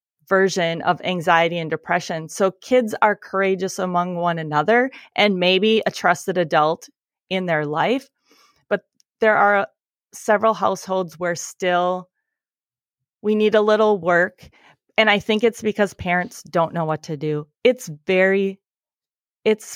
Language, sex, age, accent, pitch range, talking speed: English, female, 30-49, American, 165-210 Hz, 140 wpm